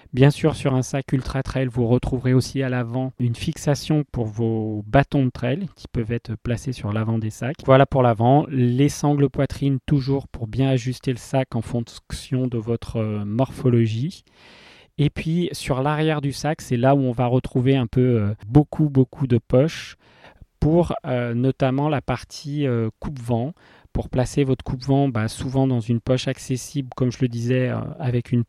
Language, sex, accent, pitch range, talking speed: French, male, French, 120-140 Hz, 180 wpm